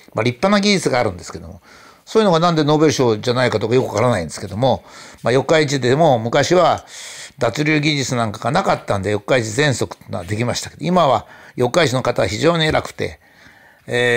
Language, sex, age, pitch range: Japanese, male, 60-79, 120-165 Hz